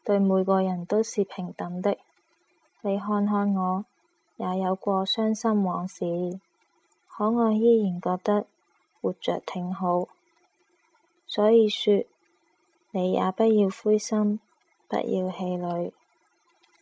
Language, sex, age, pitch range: Chinese, female, 20-39, 185-230 Hz